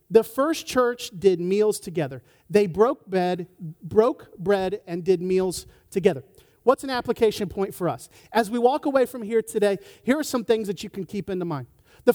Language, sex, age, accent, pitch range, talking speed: English, male, 40-59, American, 175-225 Hz, 190 wpm